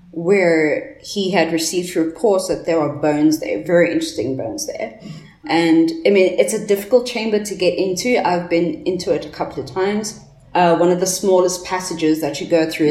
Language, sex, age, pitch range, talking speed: English, female, 20-39, 160-205 Hz, 195 wpm